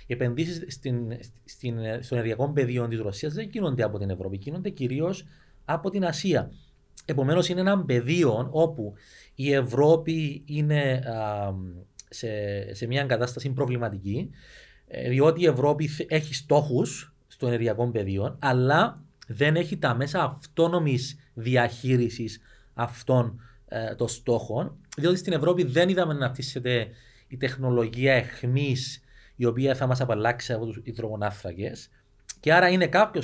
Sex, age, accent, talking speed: male, 30-49, native, 135 wpm